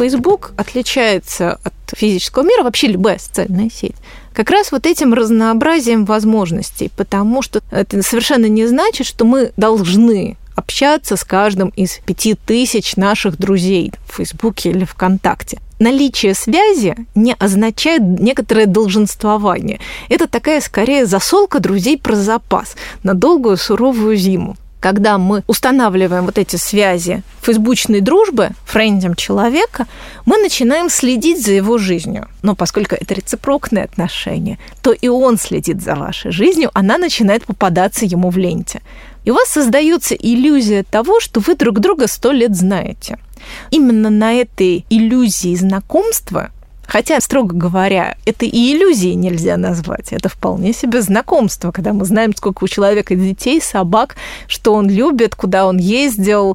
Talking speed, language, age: 140 wpm, Russian, 20-39